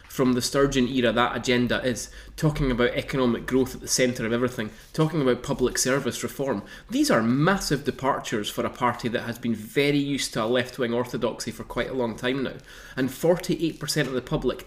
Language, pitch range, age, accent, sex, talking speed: English, 125-160 Hz, 20-39, British, male, 195 wpm